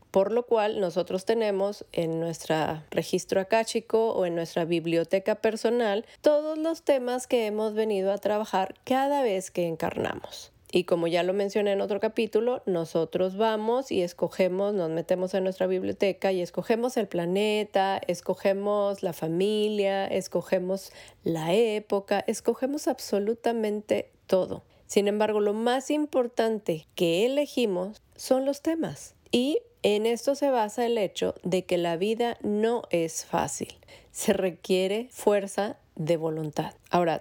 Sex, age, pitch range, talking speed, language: female, 30-49, 185-230 Hz, 140 wpm, Spanish